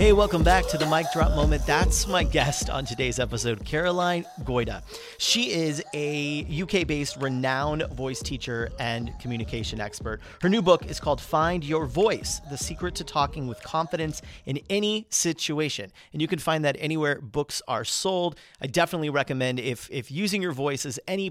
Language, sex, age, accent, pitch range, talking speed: English, male, 40-59, American, 125-165 Hz, 175 wpm